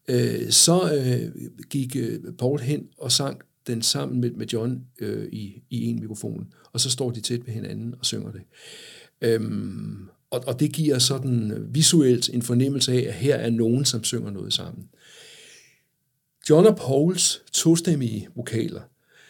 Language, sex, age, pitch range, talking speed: Danish, male, 60-79, 120-160 Hz, 145 wpm